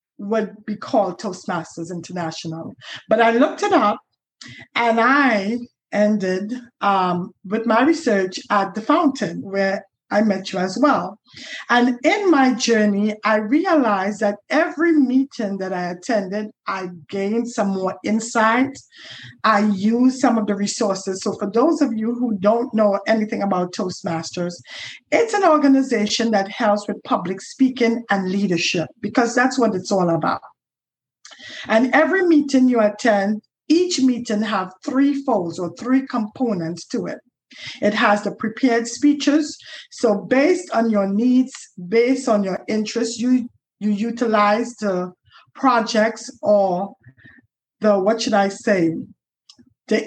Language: English